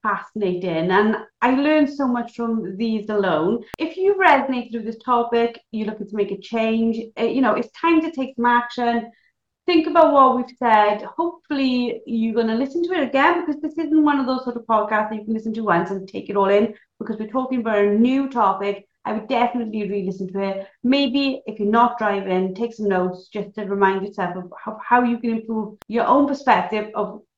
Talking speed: 210 wpm